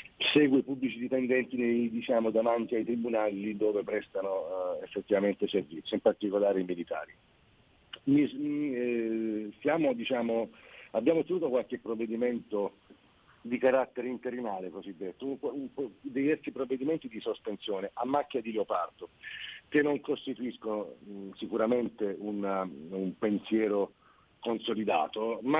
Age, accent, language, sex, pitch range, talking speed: 50-69, native, Italian, male, 110-135 Hz, 115 wpm